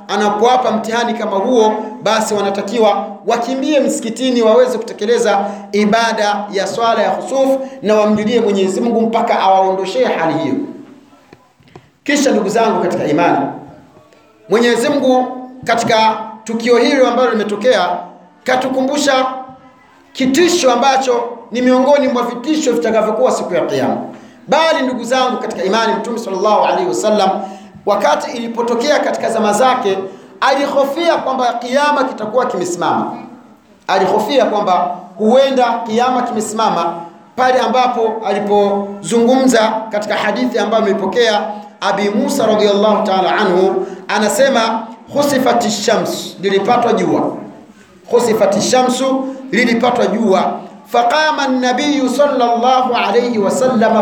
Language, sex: Swahili, male